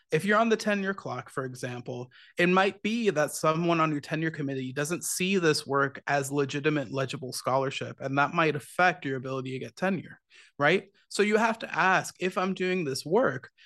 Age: 30-49